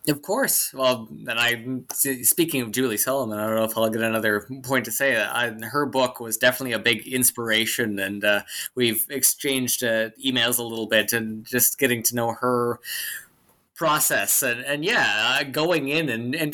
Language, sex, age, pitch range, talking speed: English, male, 20-39, 115-135 Hz, 190 wpm